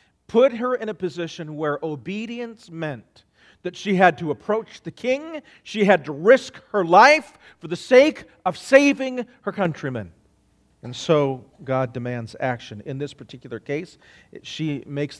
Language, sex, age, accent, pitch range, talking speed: English, male, 40-59, American, 120-160 Hz, 155 wpm